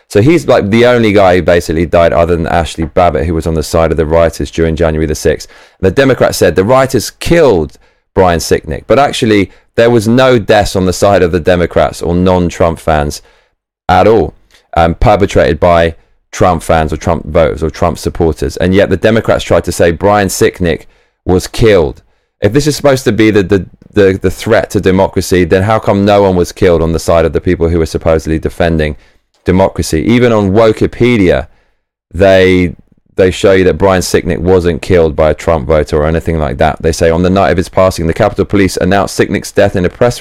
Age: 20-39